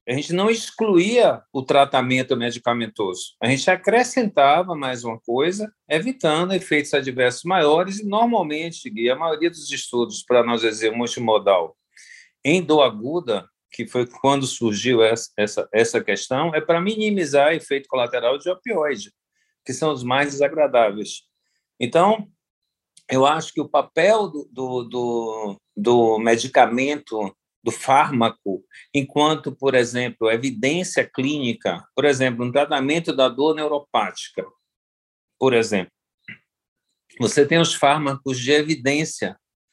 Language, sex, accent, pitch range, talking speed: Portuguese, male, Brazilian, 120-160 Hz, 130 wpm